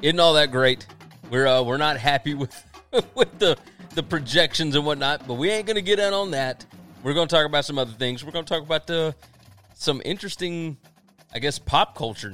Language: English